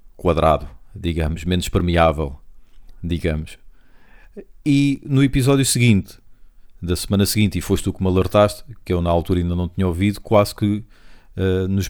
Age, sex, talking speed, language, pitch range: 40-59, male, 145 wpm, Portuguese, 85-105 Hz